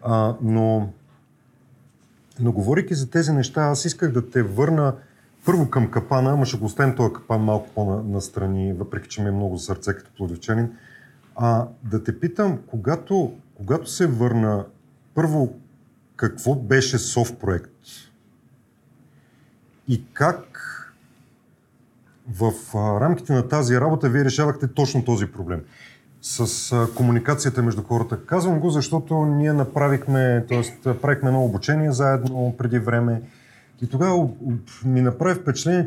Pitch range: 115-145 Hz